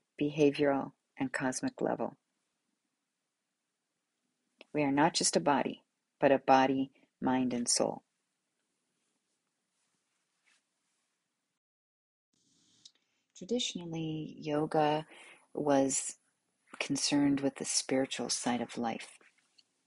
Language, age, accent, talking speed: English, 40-59, American, 80 wpm